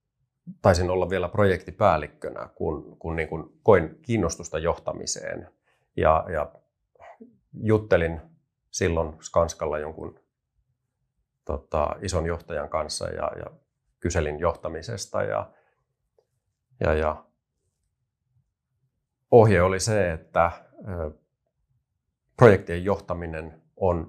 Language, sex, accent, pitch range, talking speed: Finnish, male, native, 80-105 Hz, 75 wpm